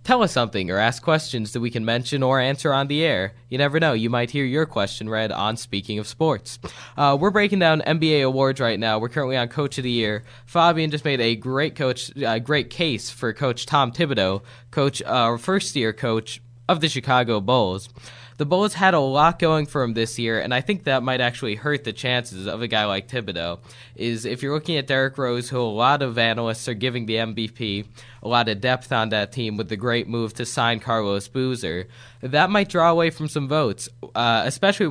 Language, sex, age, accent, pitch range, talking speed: English, male, 20-39, American, 115-140 Hz, 220 wpm